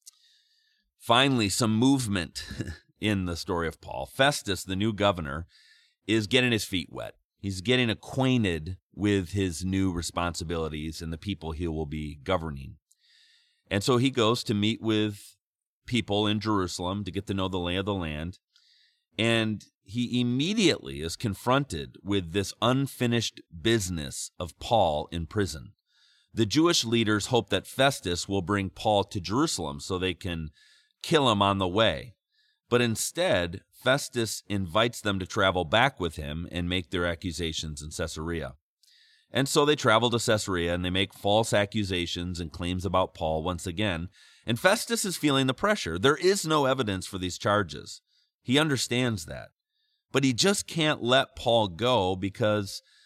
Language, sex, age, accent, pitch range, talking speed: English, male, 40-59, American, 90-125 Hz, 155 wpm